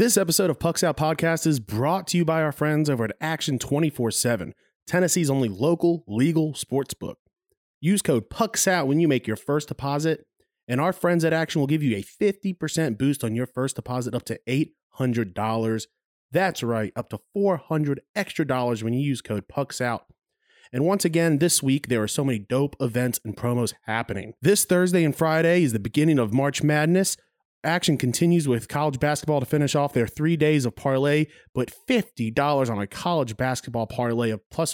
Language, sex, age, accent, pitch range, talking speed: English, male, 30-49, American, 120-160 Hz, 185 wpm